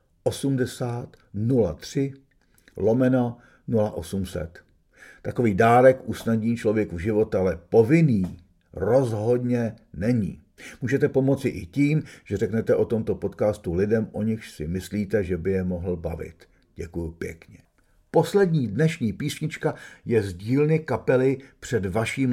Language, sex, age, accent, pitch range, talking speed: Czech, male, 50-69, native, 95-130 Hz, 110 wpm